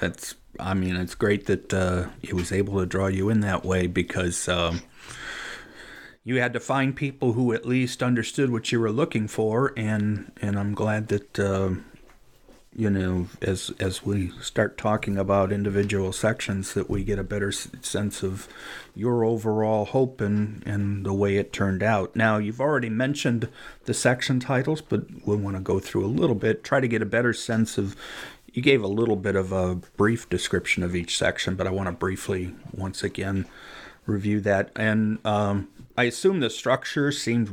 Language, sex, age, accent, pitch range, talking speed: English, male, 40-59, American, 95-115 Hz, 185 wpm